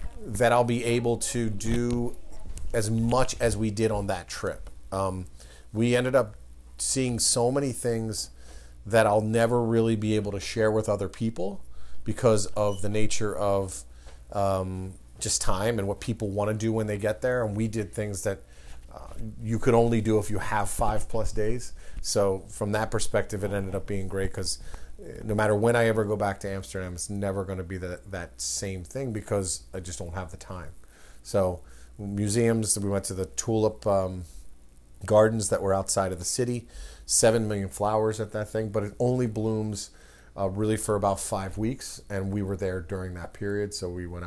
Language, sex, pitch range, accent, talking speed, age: English, male, 90-110 Hz, American, 195 wpm, 40-59